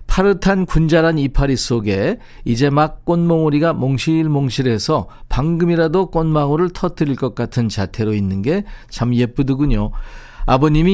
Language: Korean